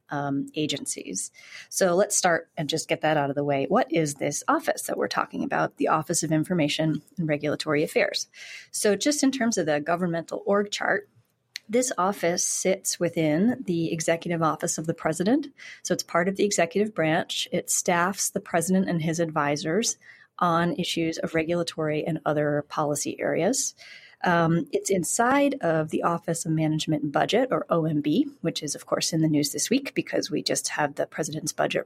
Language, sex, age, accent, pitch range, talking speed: English, female, 30-49, American, 155-190 Hz, 185 wpm